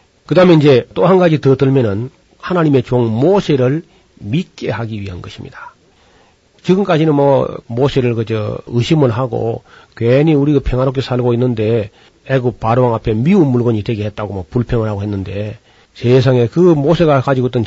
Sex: male